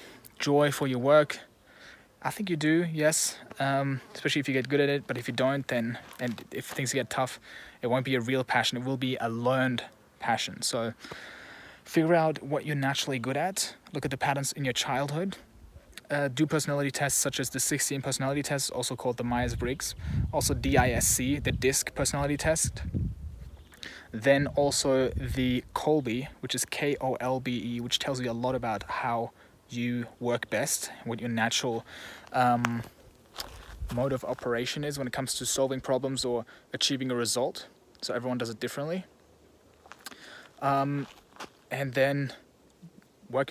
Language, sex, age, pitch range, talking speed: English, male, 20-39, 125-140 Hz, 165 wpm